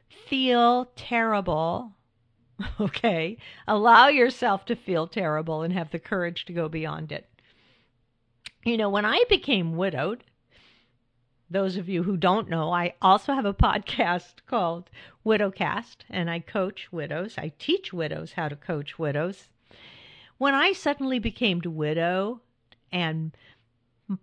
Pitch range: 155-210 Hz